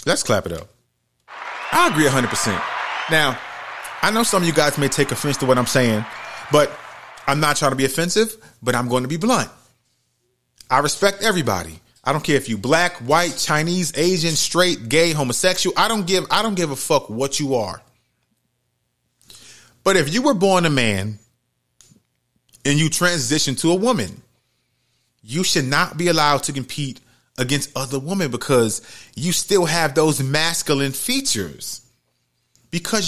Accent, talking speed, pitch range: American, 165 wpm, 130-185 Hz